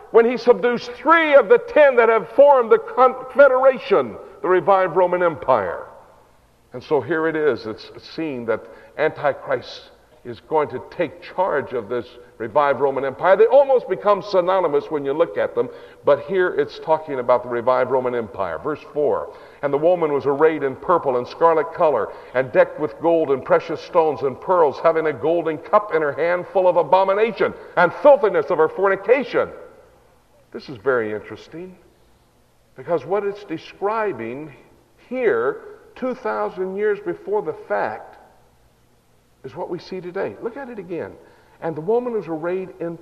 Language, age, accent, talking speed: English, 60-79, American, 165 wpm